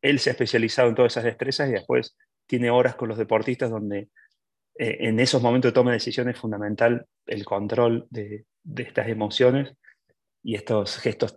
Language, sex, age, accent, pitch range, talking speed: Spanish, male, 30-49, Argentinian, 110-125 Hz, 185 wpm